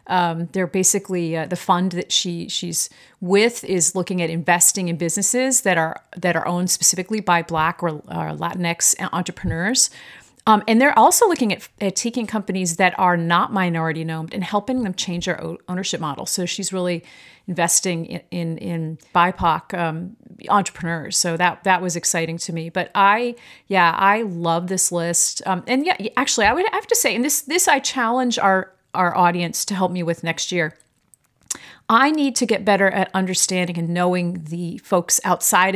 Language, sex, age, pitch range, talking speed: English, female, 40-59, 170-210 Hz, 180 wpm